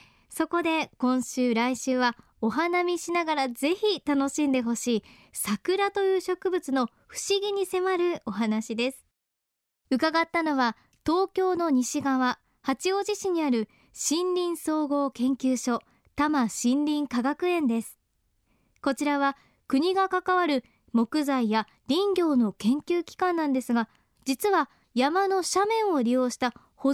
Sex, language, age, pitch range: male, Japanese, 20-39, 245-335 Hz